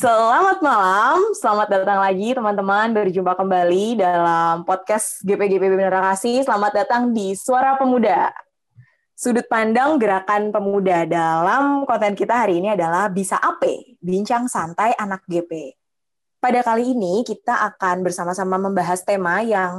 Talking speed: 125 wpm